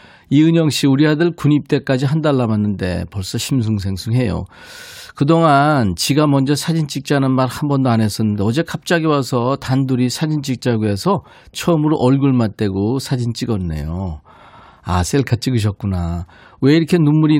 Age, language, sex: 40-59, Korean, male